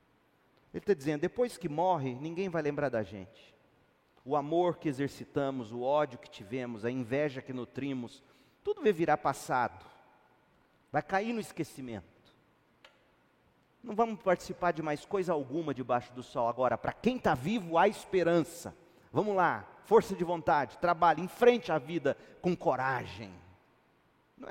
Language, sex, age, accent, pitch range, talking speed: Portuguese, male, 40-59, Brazilian, 125-175 Hz, 145 wpm